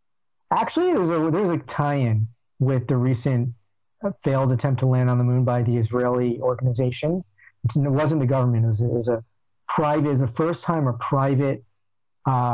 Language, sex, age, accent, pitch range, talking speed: English, male, 40-59, American, 120-140 Hz, 185 wpm